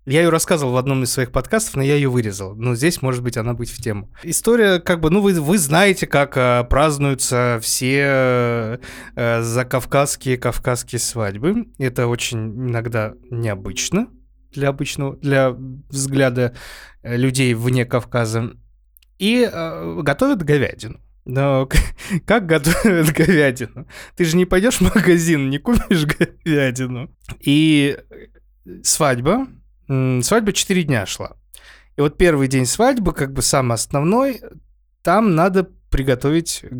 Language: Russian